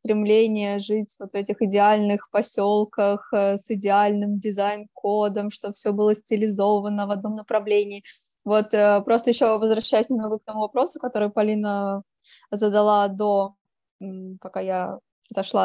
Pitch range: 205-230 Hz